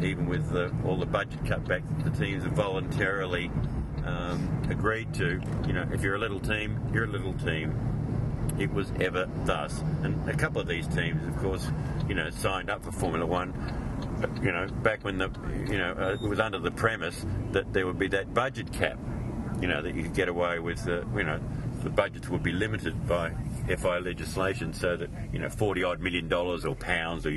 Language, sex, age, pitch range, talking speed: English, male, 50-69, 90-120 Hz, 210 wpm